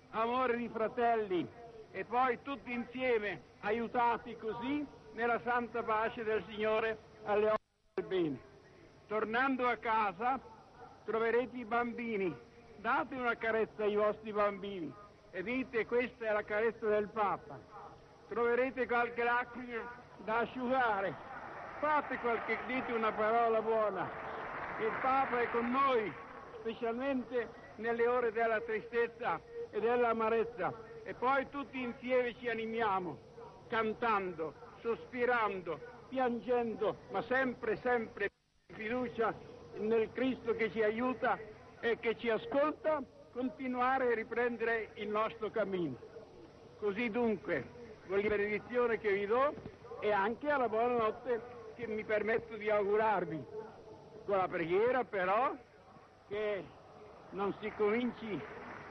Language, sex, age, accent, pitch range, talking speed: Italian, male, 60-79, native, 215-245 Hz, 120 wpm